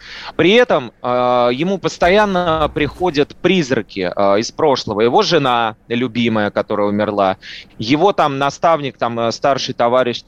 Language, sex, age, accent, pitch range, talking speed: Russian, male, 30-49, native, 120-170 Hz, 125 wpm